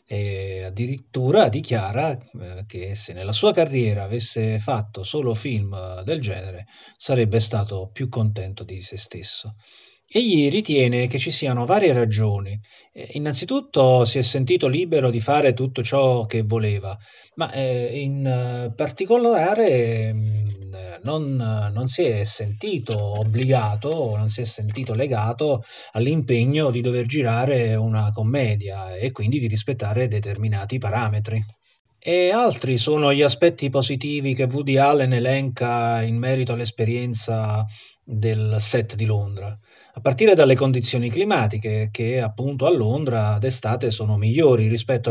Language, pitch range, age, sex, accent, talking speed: Italian, 105-130 Hz, 30-49, male, native, 125 wpm